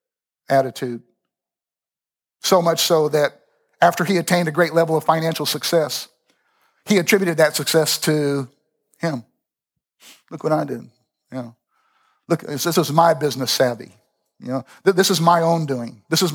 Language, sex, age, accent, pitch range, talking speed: English, male, 50-69, American, 145-175 Hz, 150 wpm